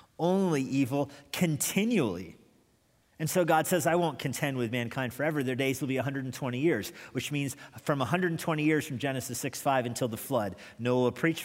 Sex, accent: male, American